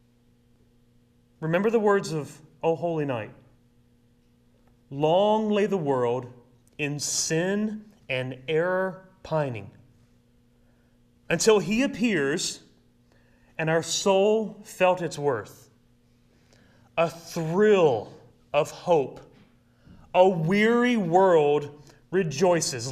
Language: English